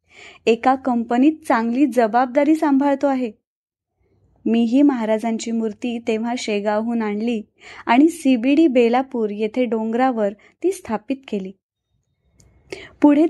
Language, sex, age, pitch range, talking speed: Marathi, female, 20-39, 230-275 Hz, 100 wpm